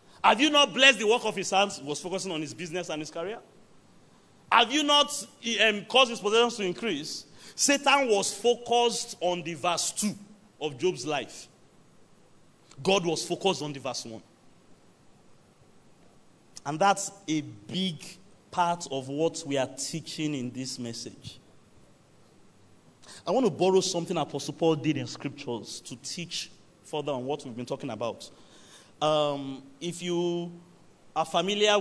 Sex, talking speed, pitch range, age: male, 155 wpm, 150-200 Hz, 40-59